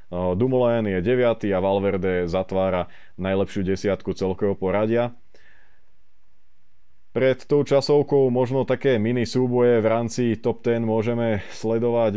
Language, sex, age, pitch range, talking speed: Slovak, male, 20-39, 100-115 Hz, 120 wpm